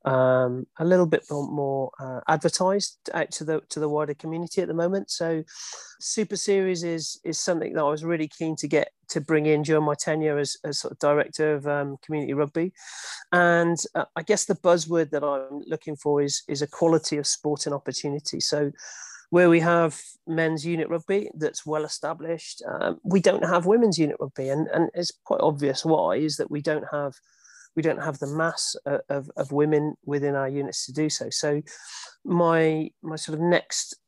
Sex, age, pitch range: male, 40-59, 150-175 Hz